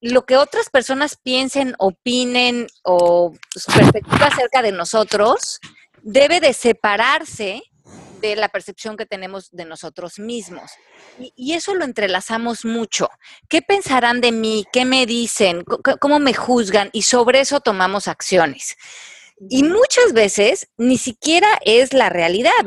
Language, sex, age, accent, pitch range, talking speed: Spanish, female, 30-49, Mexican, 200-275 Hz, 130 wpm